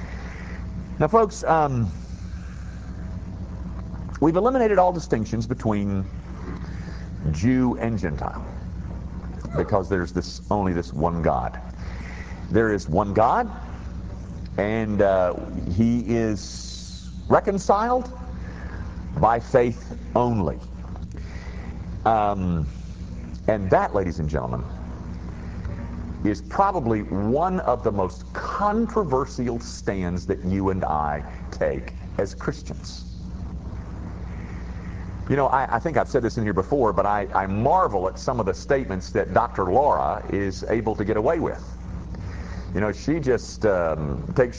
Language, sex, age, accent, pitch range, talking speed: English, male, 50-69, American, 85-115 Hz, 115 wpm